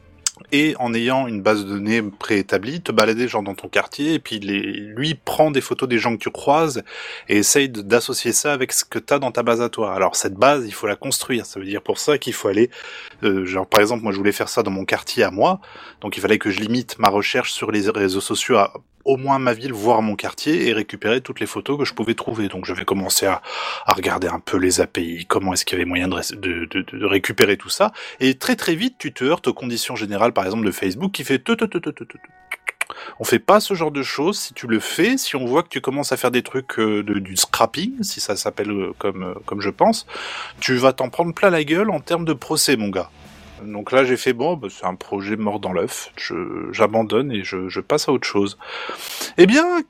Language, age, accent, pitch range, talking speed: French, 20-39, French, 105-155 Hz, 245 wpm